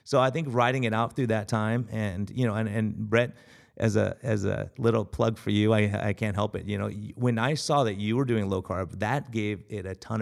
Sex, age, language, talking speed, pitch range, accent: male, 30-49, English, 260 wpm, 100-120 Hz, American